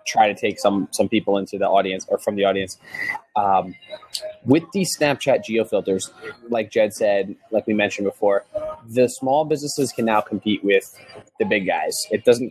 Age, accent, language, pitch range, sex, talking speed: 20-39, American, English, 105-145 Hz, male, 180 wpm